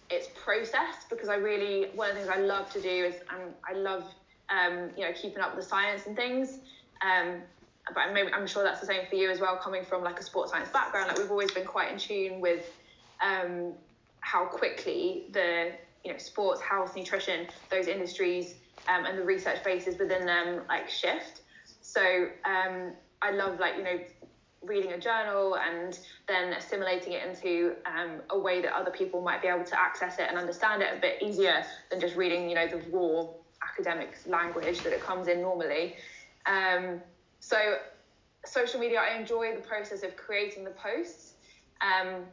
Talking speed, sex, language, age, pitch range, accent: 190 wpm, female, English, 20-39, 175-200 Hz, British